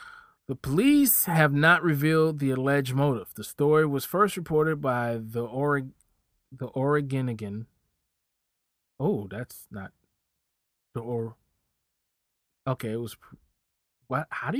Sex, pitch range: male, 105-155 Hz